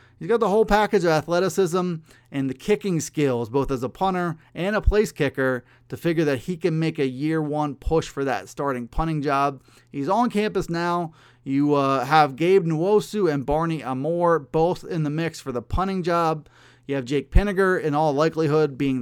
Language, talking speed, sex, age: English, 195 wpm, male, 30-49